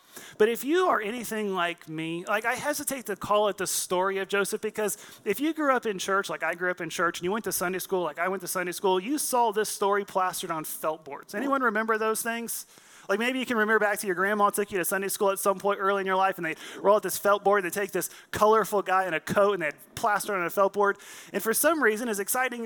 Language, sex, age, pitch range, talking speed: English, male, 30-49, 160-215 Hz, 280 wpm